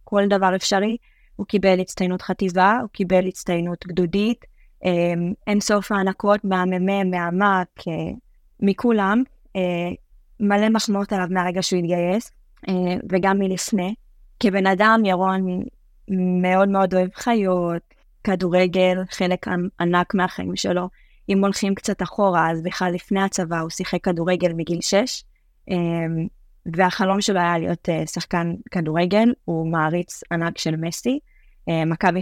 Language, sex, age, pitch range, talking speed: Hebrew, female, 20-39, 170-195 Hz, 120 wpm